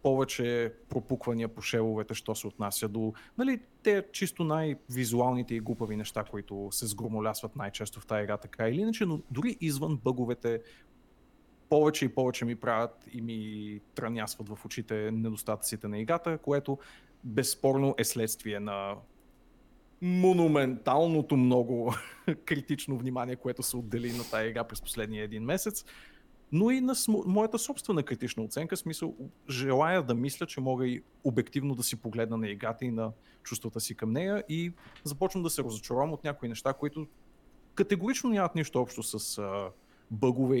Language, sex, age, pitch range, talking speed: Bulgarian, male, 30-49, 115-155 Hz, 155 wpm